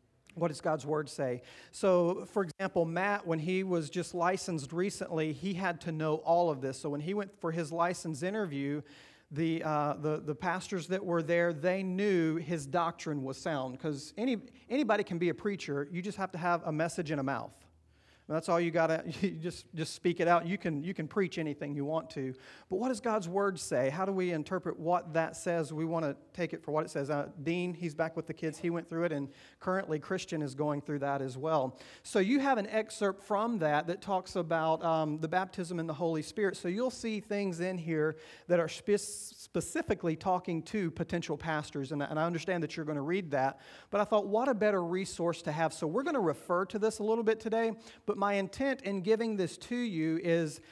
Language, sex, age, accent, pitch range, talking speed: English, male, 40-59, American, 155-195 Hz, 230 wpm